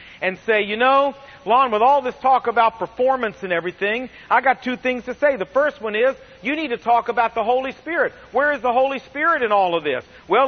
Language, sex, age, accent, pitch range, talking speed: English, male, 40-59, American, 200-260 Hz, 235 wpm